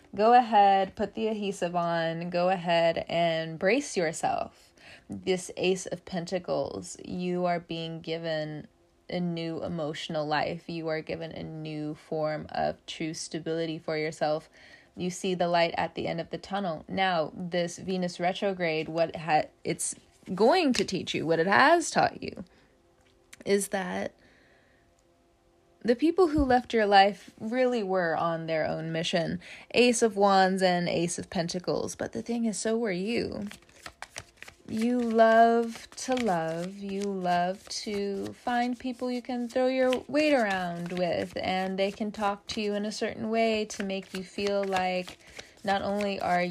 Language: English